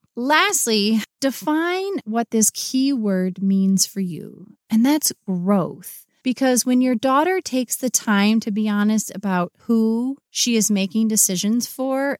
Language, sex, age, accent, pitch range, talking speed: English, female, 30-49, American, 205-260 Hz, 145 wpm